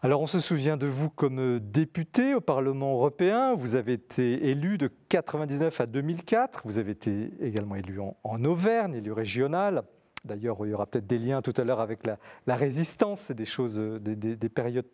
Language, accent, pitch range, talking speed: French, French, 120-170 Hz, 195 wpm